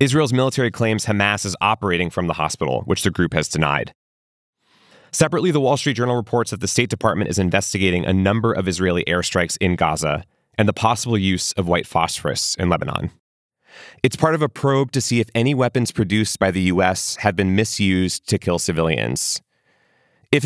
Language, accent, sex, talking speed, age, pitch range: English, American, male, 185 wpm, 30-49, 95-130 Hz